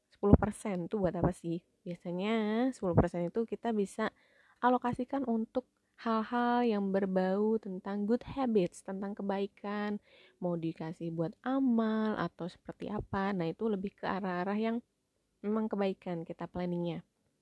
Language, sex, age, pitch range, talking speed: Indonesian, female, 20-39, 185-245 Hz, 125 wpm